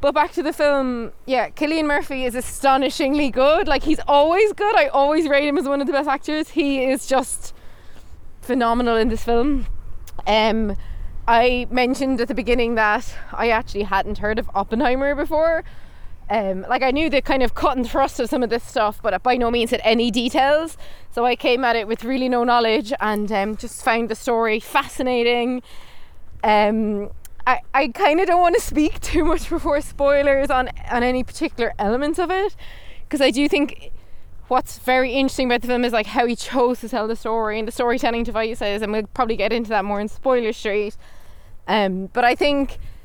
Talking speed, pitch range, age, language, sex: 200 wpm, 225-280 Hz, 20-39, English, female